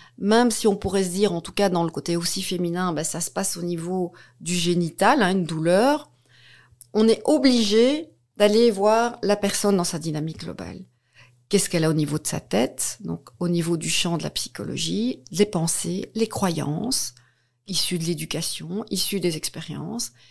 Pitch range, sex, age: 160-200 Hz, female, 40-59